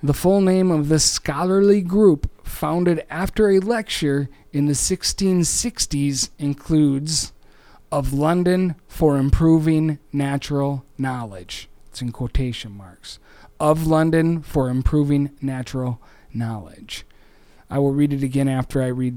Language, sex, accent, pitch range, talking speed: English, male, American, 105-155 Hz, 120 wpm